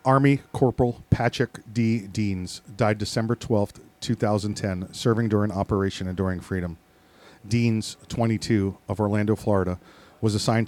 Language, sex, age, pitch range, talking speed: English, male, 40-59, 95-110 Hz, 120 wpm